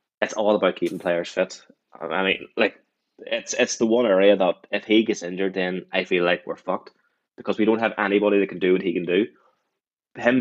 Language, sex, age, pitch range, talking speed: English, male, 10-29, 95-105 Hz, 220 wpm